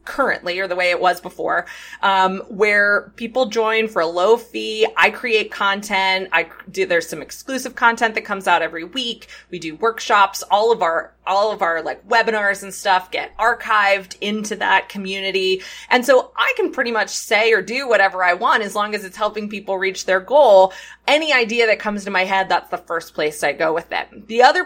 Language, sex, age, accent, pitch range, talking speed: English, female, 20-39, American, 185-230 Hz, 205 wpm